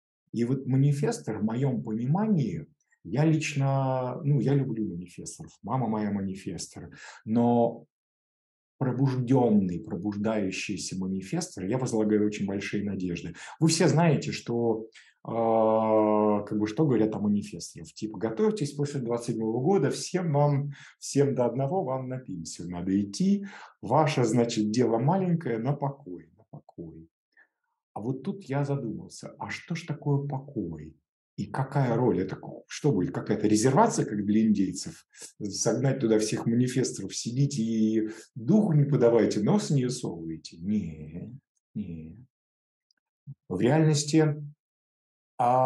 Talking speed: 125 wpm